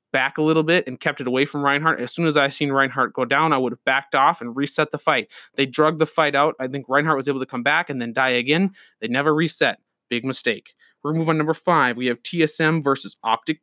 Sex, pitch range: male, 135-160 Hz